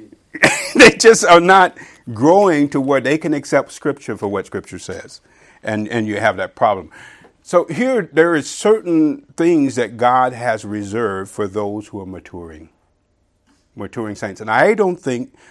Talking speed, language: 165 wpm, English